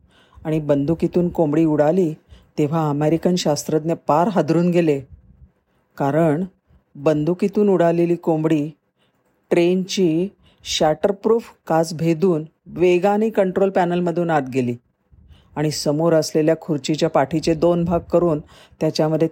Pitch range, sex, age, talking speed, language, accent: 150-180 Hz, female, 40-59, 95 wpm, Marathi, native